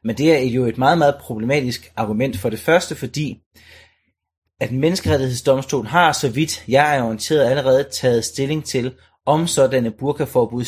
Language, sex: Danish, male